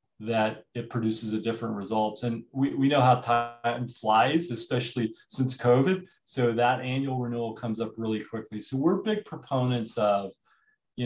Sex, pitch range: male, 105-120 Hz